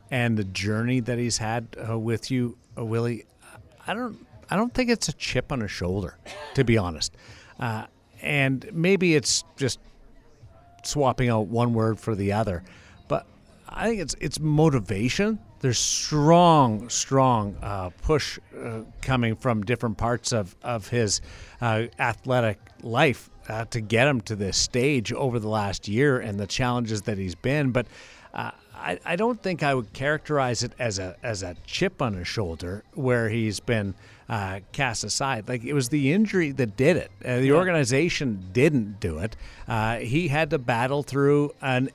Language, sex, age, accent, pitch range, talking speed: English, male, 50-69, American, 110-140 Hz, 170 wpm